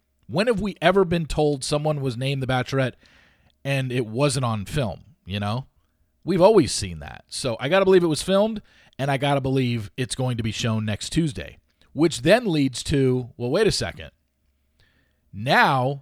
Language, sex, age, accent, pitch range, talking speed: English, male, 40-59, American, 115-165 Hz, 190 wpm